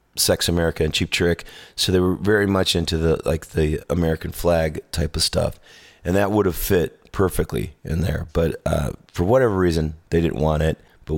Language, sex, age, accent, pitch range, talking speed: English, male, 30-49, American, 80-95 Hz, 200 wpm